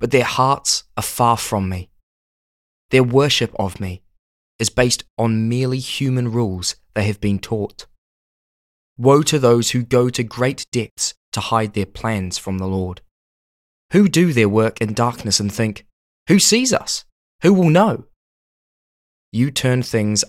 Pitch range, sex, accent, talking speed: 95-135 Hz, male, British, 155 wpm